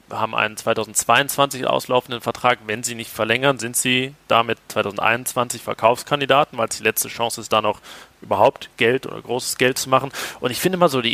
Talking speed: 190 wpm